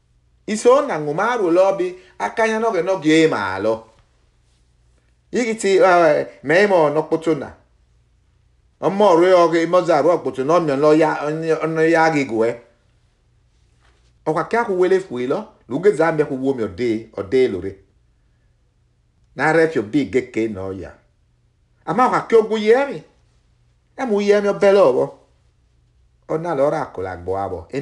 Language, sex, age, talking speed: English, male, 50-69, 140 wpm